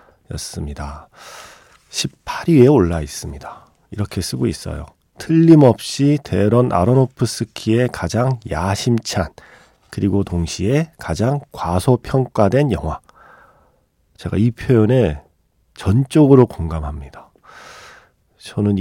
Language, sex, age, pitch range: Korean, male, 40-59, 90-130 Hz